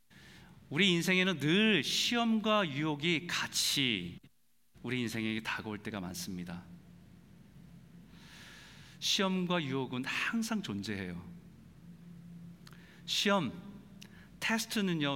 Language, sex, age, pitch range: Korean, male, 40-59, 145-200 Hz